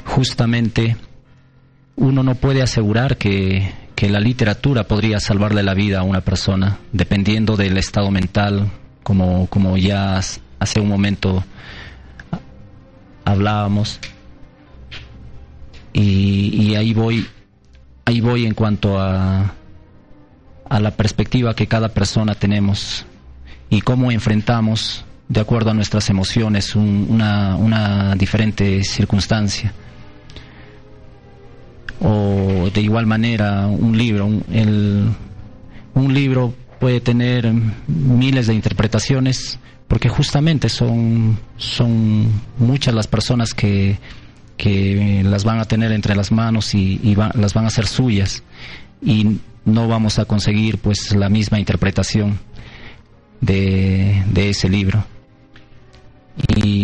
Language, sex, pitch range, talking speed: Spanish, male, 100-115 Hz, 115 wpm